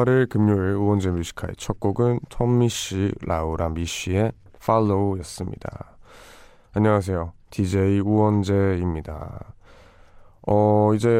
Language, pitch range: Korean, 90-110 Hz